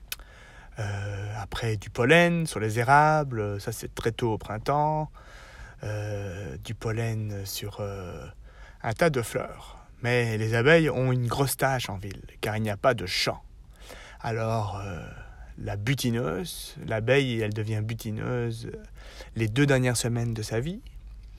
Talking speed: 145 wpm